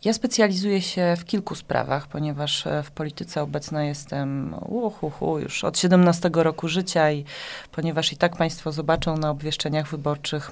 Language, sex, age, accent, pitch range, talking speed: Polish, female, 30-49, native, 145-170 Hz, 150 wpm